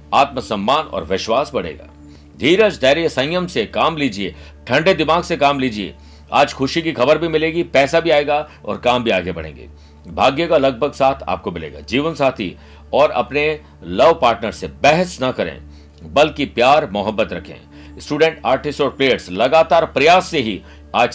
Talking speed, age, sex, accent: 165 wpm, 60-79, male, native